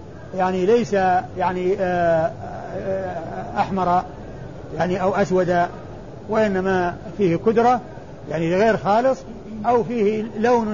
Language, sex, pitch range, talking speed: Arabic, male, 180-215 Hz, 90 wpm